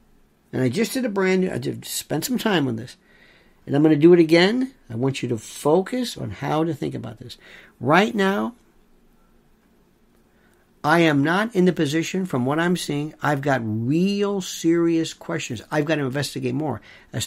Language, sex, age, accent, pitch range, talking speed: English, male, 50-69, American, 135-190 Hz, 190 wpm